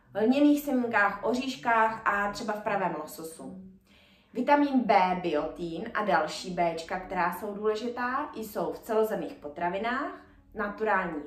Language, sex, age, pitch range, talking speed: Czech, female, 20-39, 190-255 Hz, 120 wpm